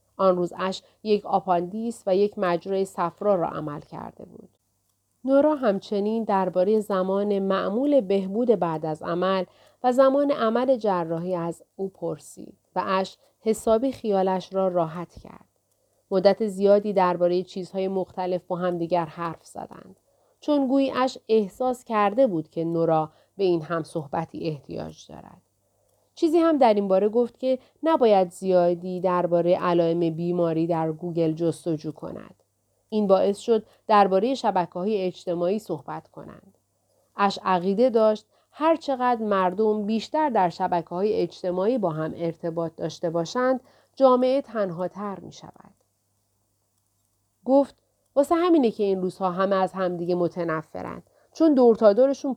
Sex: female